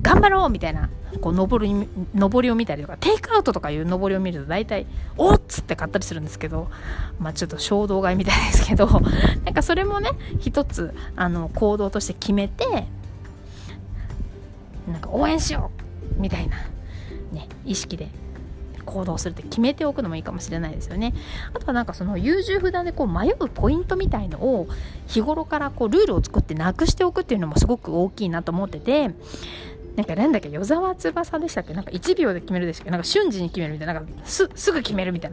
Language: Japanese